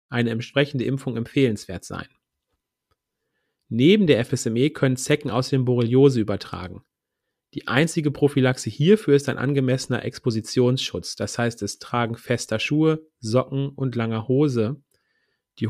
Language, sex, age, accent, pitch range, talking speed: German, male, 40-59, German, 120-140 Hz, 125 wpm